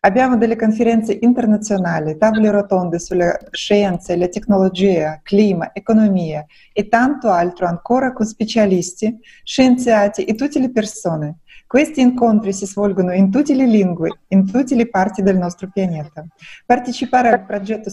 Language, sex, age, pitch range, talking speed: Italian, female, 30-49, 185-230 Hz, 135 wpm